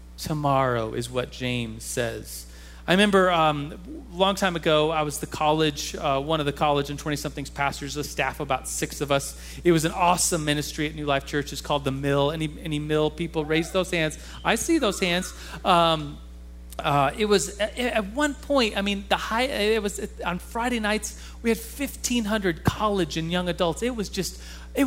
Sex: male